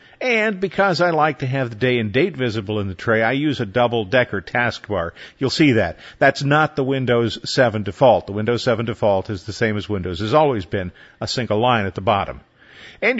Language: English